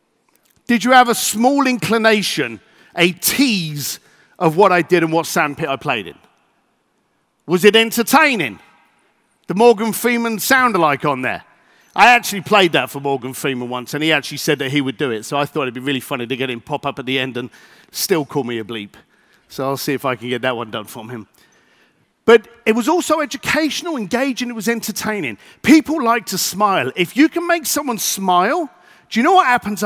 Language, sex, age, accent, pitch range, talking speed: English, male, 50-69, British, 155-255 Hz, 205 wpm